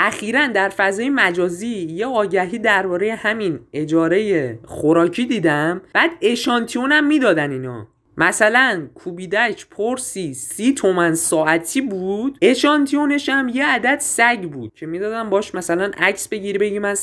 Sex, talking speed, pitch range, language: male, 135 wpm, 170-245 Hz, Persian